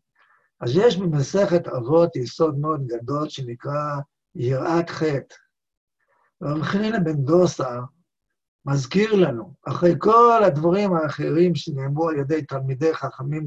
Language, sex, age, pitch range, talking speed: Hebrew, male, 60-79, 145-180 Hz, 110 wpm